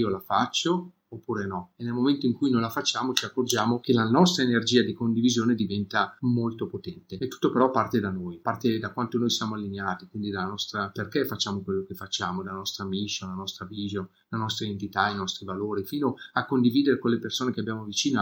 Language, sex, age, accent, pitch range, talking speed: Italian, male, 40-59, native, 105-125 Hz, 210 wpm